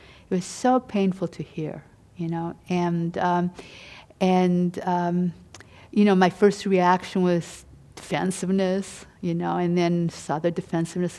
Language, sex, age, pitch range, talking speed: English, female, 50-69, 170-195 Hz, 140 wpm